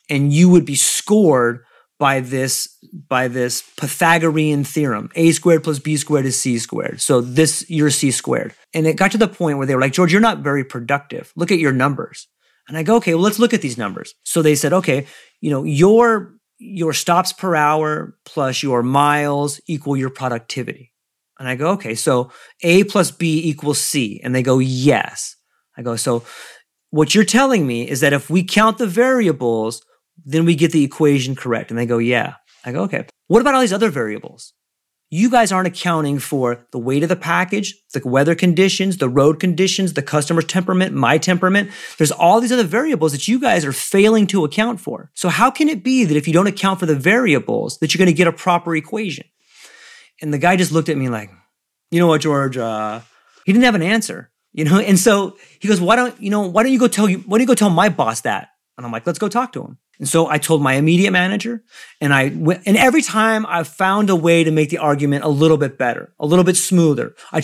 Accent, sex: American, male